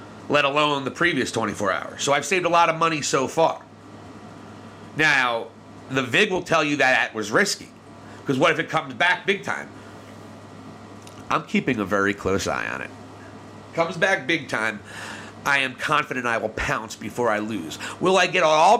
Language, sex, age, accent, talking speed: English, male, 40-59, American, 190 wpm